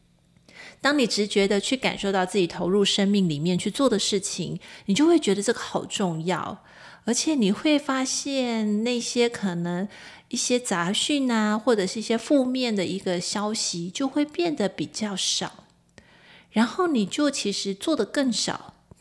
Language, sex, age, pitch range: Chinese, female, 30-49, 180-235 Hz